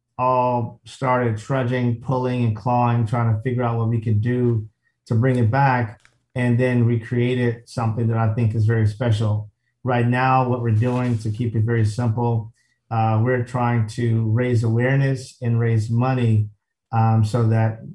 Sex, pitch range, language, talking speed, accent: male, 115-125 Hz, English, 165 wpm, American